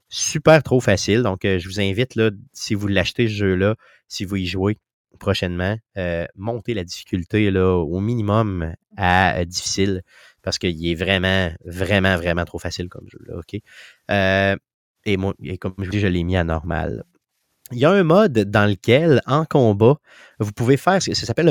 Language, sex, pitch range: French, male, 95-130 Hz